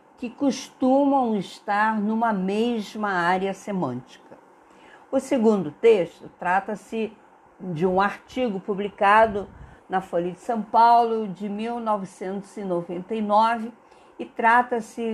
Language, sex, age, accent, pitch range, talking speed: Portuguese, female, 50-69, Brazilian, 185-230 Hz, 95 wpm